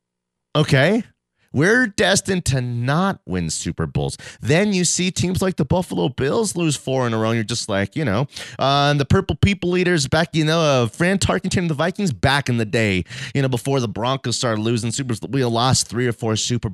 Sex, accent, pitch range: male, American, 100-140 Hz